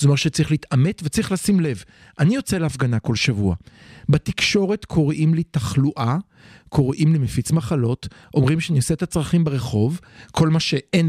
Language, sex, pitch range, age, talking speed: Hebrew, male, 130-170 Hz, 50-69, 155 wpm